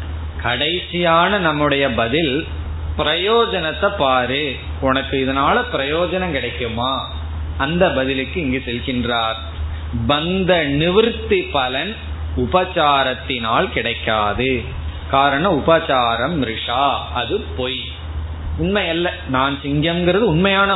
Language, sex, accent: Tamil, male, native